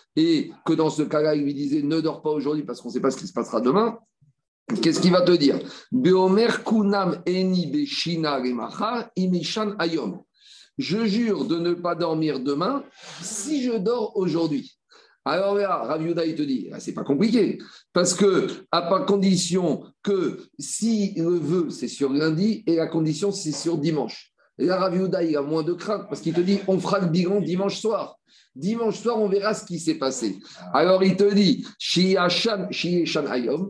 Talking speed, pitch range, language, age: 180 wpm, 160-215 Hz, French, 50-69